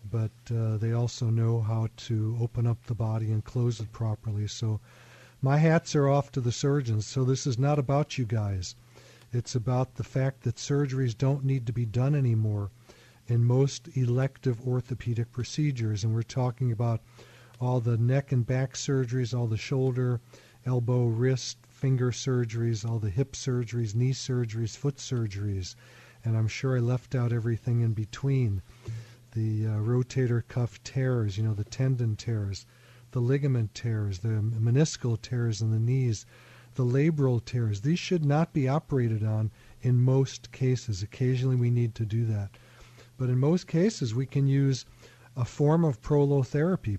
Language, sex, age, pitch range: English, male, 40-59, 115-135 Hz